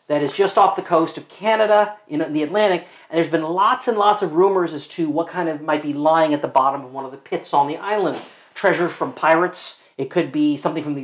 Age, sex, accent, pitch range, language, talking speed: 40-59, male, American, 160-200 Hz, English, 255 wpm